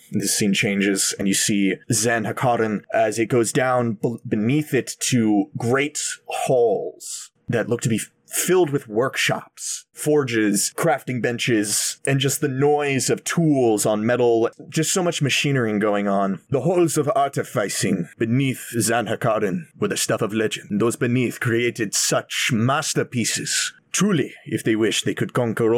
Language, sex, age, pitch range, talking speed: English, male, 30-49, 110-140 Hz, 155 wpm